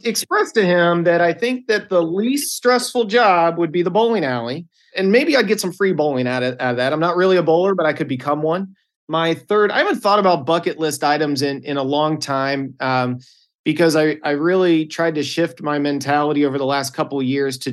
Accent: American